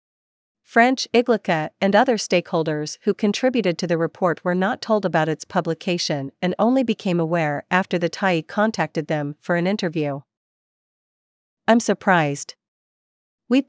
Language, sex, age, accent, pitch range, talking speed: English, female, 40-59, American, 165-205 Hz, 135 wpm